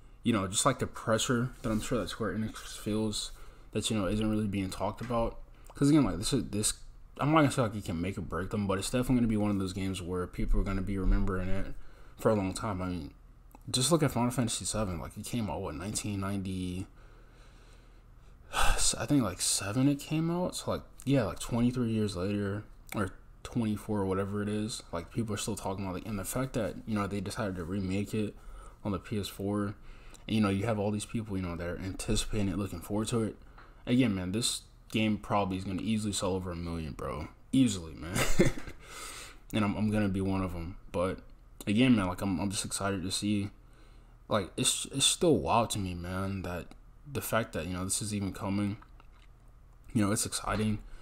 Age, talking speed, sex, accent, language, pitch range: 20-39, 220 wpm, male, American, English, 95-110 Hz